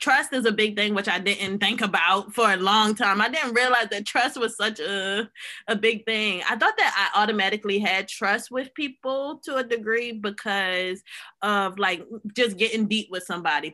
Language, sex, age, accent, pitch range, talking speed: English, female, 20-39, American, 195-255 Hz, 195 wpm